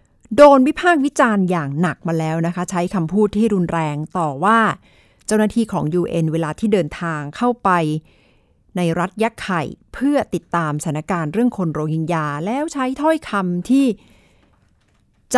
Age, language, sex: 60-79, Thai, female